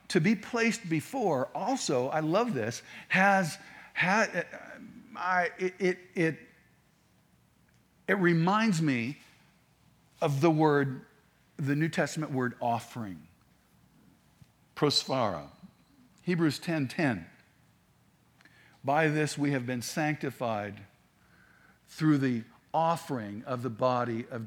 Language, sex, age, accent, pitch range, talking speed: English, male, 50-69, American, 125-165 Hz, 105 wpm